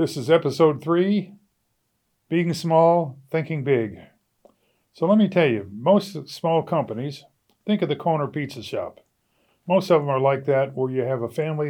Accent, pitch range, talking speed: American, 125-150 Hz, 170 wpm